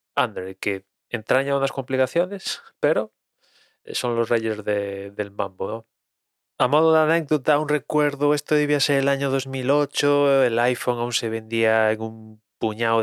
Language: Spanish